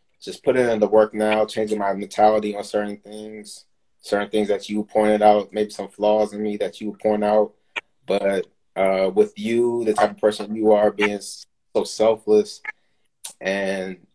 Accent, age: American, 20-39